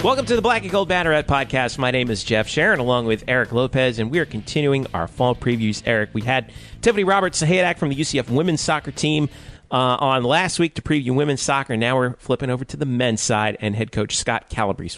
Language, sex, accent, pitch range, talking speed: English, male, American, 110-135 Hz, 225 wpm